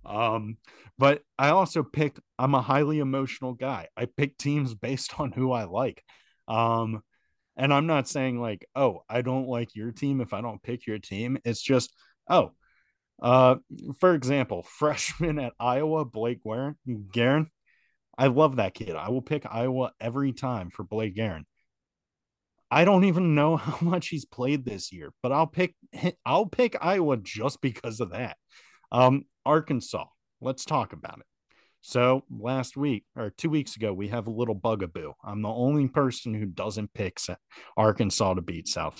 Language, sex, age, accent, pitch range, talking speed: English, male, 30-49, American, 115-145 Hz, 170 wpm